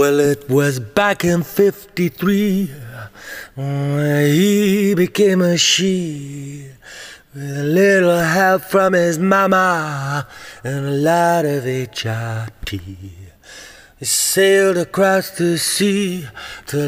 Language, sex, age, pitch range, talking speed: English, male, 30-49, 140-190 Hz, 105 wpm